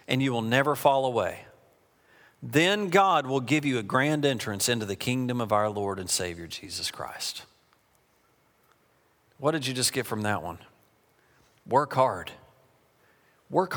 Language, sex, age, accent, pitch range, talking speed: English, male, 40-59, American, 110-150 Hz, 155 wpm